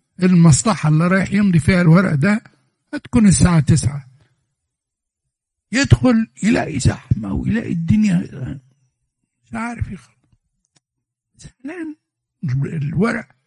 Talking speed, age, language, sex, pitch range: 90 wpm, 60-79, Arabic, male, 125-175 Hz